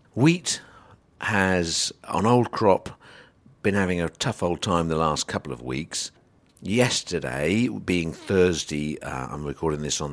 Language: English